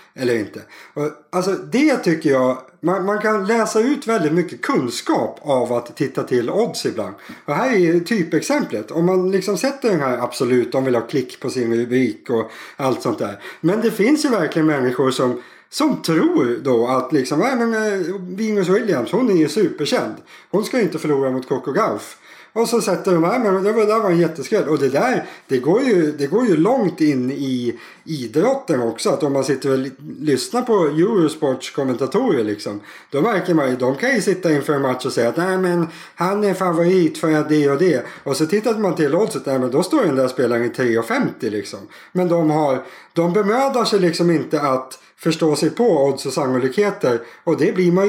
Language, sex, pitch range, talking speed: Swedish, male, 135-205 Hz, 210 wpm